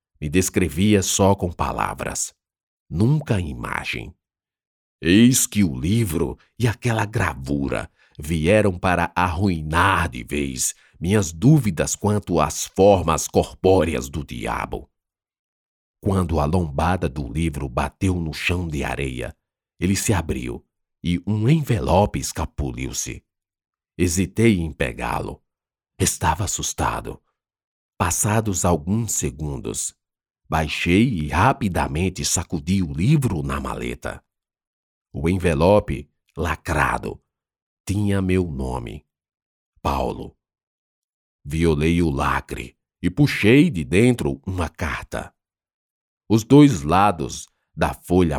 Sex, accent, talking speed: male, Brazilian, 100 wpm